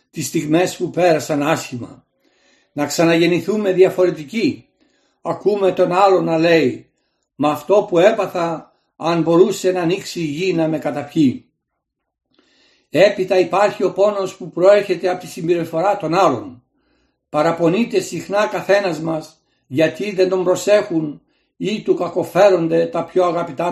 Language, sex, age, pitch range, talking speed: Greek, male, 60-79, 165-195 Hz, 130 wpm